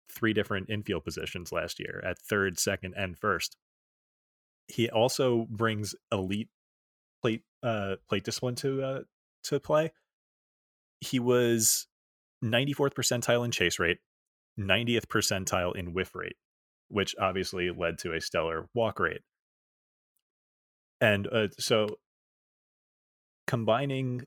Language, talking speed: English, 115 wpm